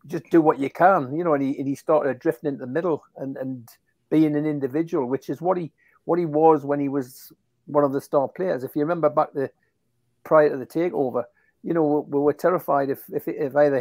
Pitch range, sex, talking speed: 135-155 Hz, male, 235 wpm